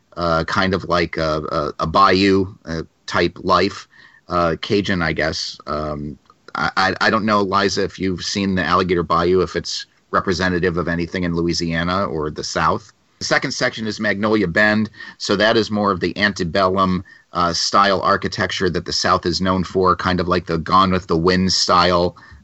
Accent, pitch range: American, 85-105 Hz